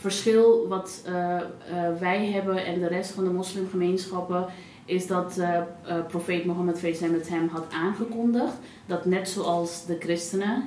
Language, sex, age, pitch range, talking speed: Dutch, female, 30-49, 175-195 Hz, 150 wpm